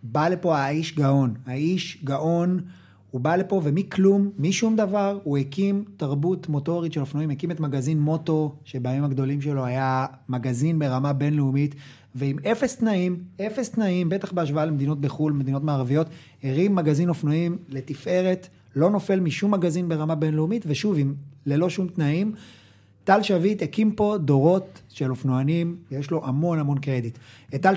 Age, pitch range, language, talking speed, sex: 30-49, 140-180 Hz, Hebrew, 145 wpm, male